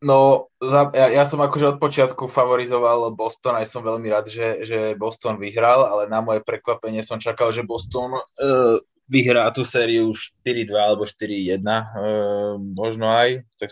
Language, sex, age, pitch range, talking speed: Slovak, male, 20-39, 95-115 Hz, 155 wpm